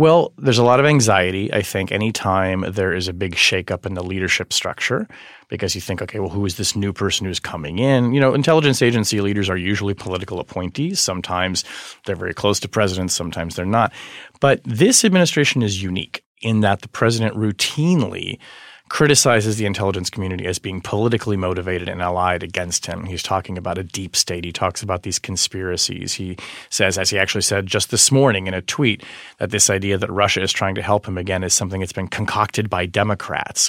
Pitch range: 90-115 Hz